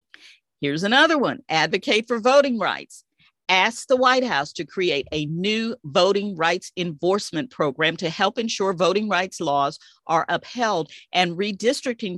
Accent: American